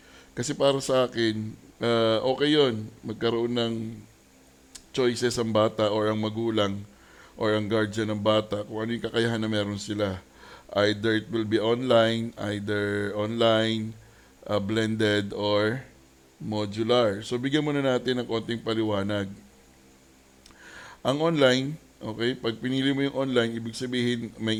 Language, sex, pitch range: Filipino, male, 105-120 Hz